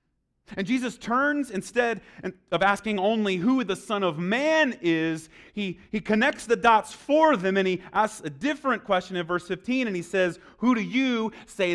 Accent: American